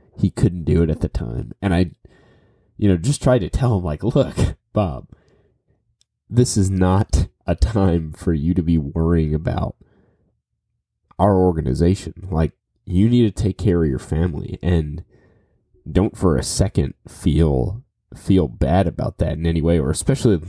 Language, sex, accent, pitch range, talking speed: English, male, American, 80-100 Hz, 165 wpm